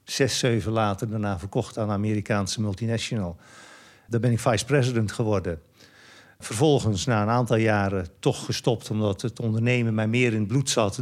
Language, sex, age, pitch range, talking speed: English, male, 50-69, 105-125 Hz, 160 wpm